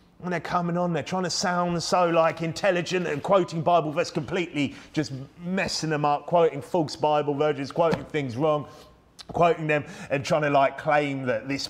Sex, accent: male, British